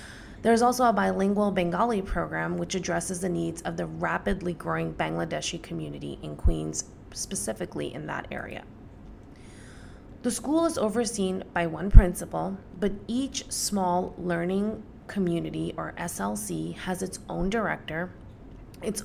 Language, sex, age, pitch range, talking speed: English, female, 20-39, 165-205 Hz, 130 wpm